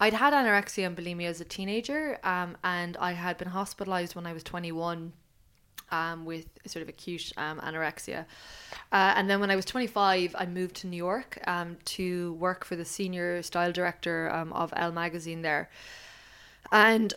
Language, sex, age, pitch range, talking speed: Danish, female, 20-39, 170-195 Hz, 180 wpm